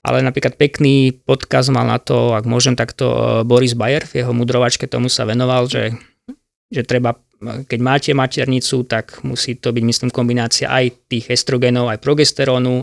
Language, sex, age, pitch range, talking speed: Slovak, male, 20-39, 120-140 Hz, 165 wpm